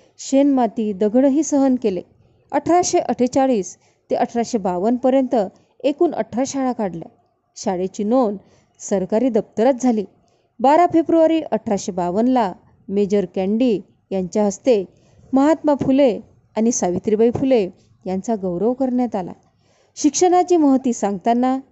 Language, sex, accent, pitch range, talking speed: Marathi, female, native, 200-275 Hz, 100 wpm